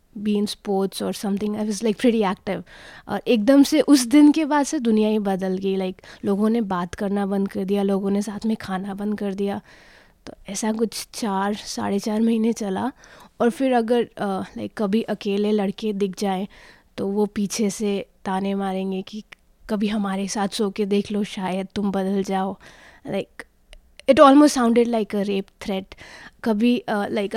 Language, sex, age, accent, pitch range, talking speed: Hindi, female, 20-39, native, 200-245 Hz, 190 wpm